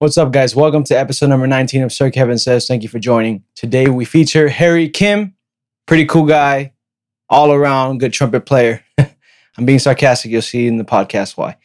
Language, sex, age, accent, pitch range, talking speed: English, male, 20-39, American, 120-150 Hz, 195 wpm